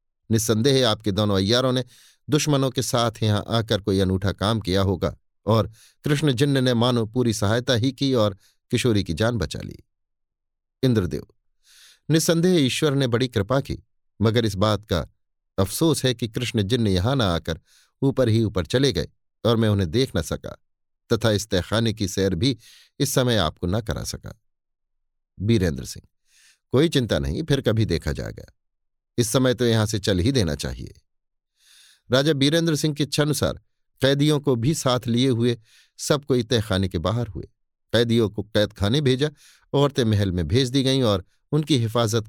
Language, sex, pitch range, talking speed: Hindi, male, 100-130 Hz, 170 wpm